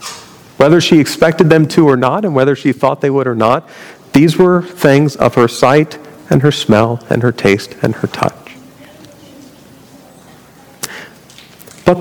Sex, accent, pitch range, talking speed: male, American, 120-150 Hz, 155 wpm